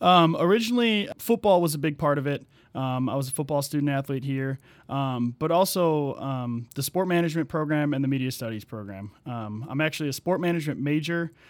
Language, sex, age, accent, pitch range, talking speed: English, male, 20-39, American, 130-155 Hz, 195 wpm